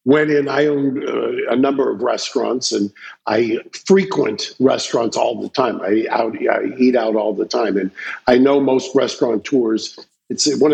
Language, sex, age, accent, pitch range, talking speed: English, male, 50-69, American, 130-180 Hz, 175 wpm